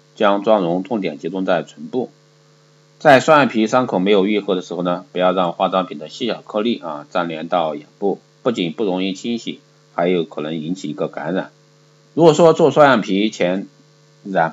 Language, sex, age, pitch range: Chinese, male, 50-69, 95-125 Hz